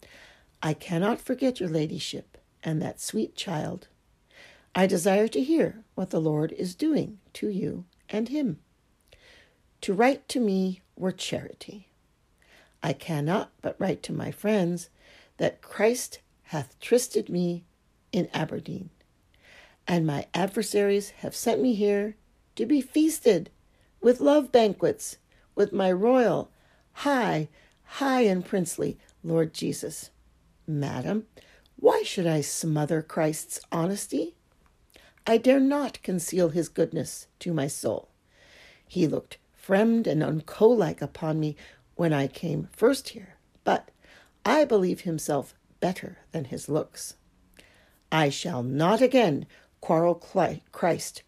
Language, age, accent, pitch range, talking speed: English, 60-79, American, 155-220 Hz, 125 wpm